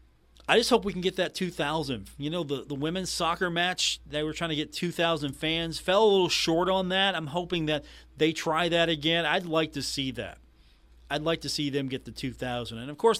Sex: male